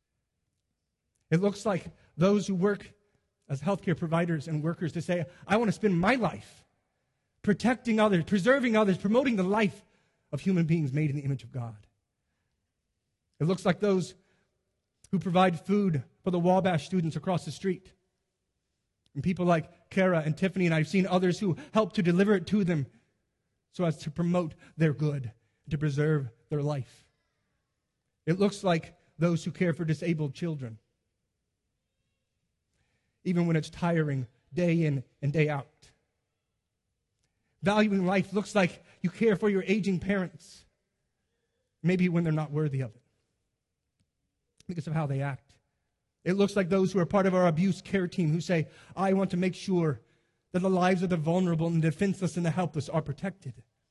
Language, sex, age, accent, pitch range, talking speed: English, male, 30-49, American, 150-195 Hz, 165 wpm